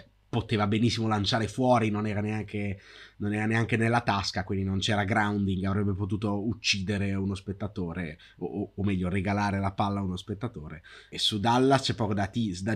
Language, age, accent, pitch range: Italian, 30-49, native, 95-110 Hz